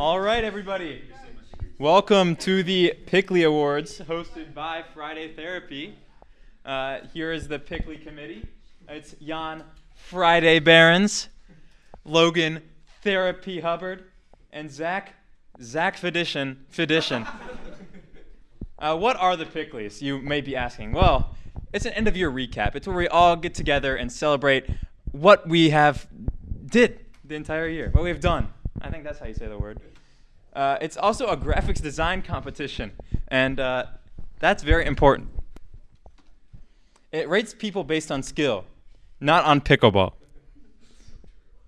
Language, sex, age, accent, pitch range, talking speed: English, male, 20-39, American, 130-175 Hz, 130 wpm